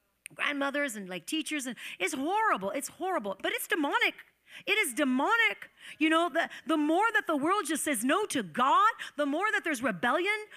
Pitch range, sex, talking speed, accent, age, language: 275-370 Hz, female, 185 wpm, American, 40-59, English